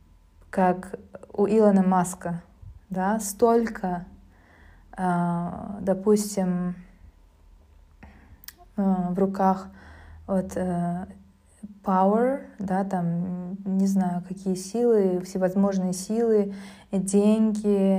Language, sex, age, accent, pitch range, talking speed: Russian, female, 20-39, native, 175-205 Hz, 65 wpm